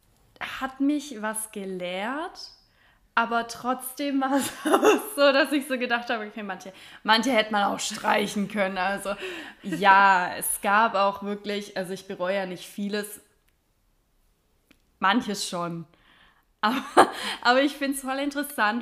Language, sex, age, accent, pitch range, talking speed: German, female, 20-39, German, 190-245 Hz, 140 wpm